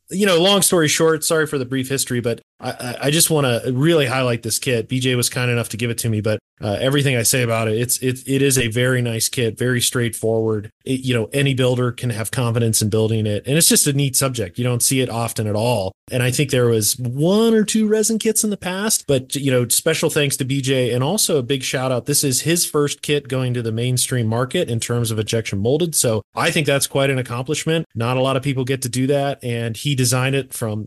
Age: 30-49